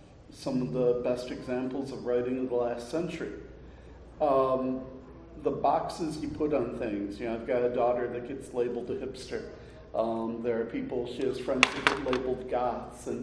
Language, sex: English, male